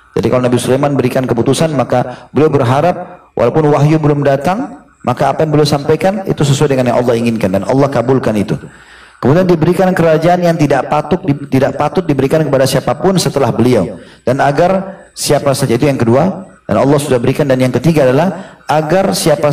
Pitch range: 130-160 Hz